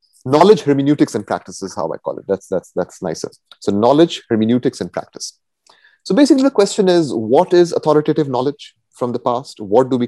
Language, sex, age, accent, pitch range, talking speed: English, male, 30-49, Indian, 105-155 Hz, 195 wpm